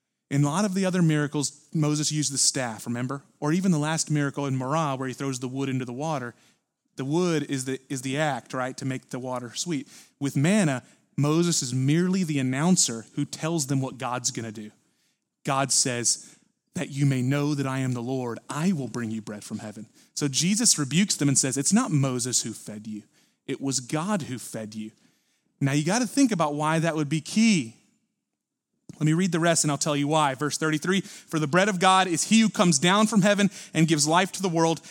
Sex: male